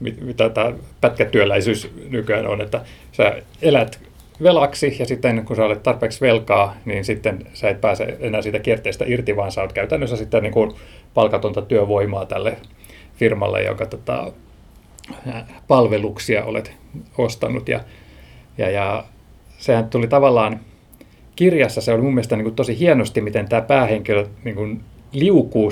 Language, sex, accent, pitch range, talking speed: Finnish, male, native, 105-130 Hz, 145 wpm